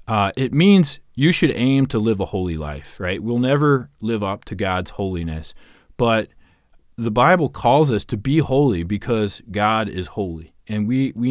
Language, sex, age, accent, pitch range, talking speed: English, male, 30-49, American, 90-115 Hz, 180 wpm